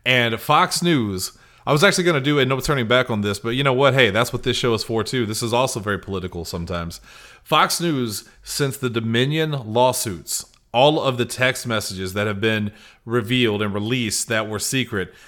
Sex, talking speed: male, 210 wpm